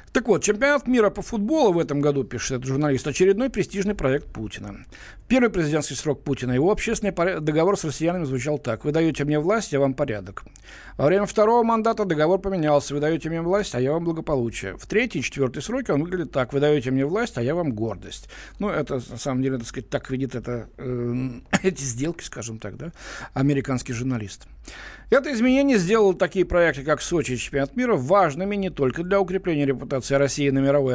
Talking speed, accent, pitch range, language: 200 wpm, native, 130-195 Hz, Russian